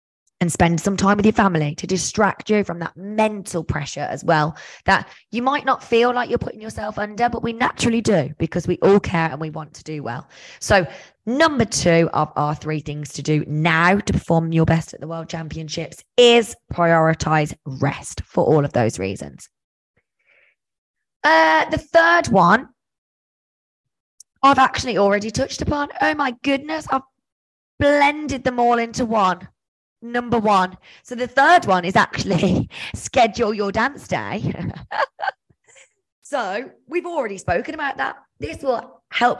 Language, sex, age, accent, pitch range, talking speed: English, female, 20-39, British, 155-230 Hz, 160 wpm